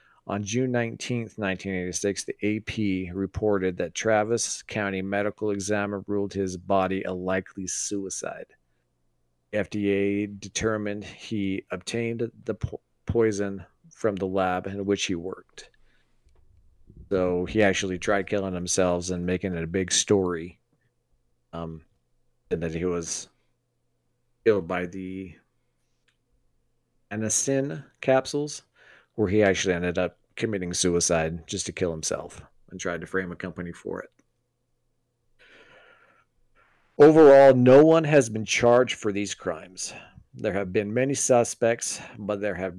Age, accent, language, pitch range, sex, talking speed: 40-59, American, English, 95-115 Hz, male, 125 wpm